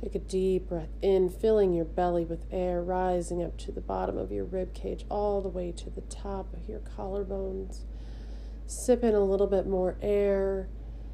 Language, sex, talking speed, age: English, female, 190 wpm, 30-49